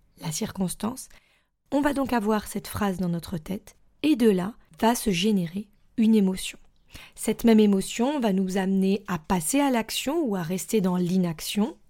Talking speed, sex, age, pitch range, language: 170 wpm, female, 20-39, 185-240 Hz, French